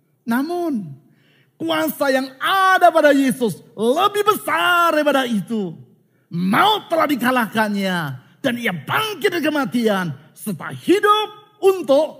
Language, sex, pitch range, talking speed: Indonesian, male, 190-310 Hz, 100 wpm